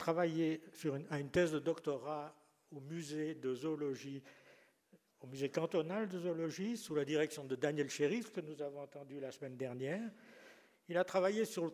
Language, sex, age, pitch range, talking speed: French, male, 60-79, 145-185 Hz, 170 wpm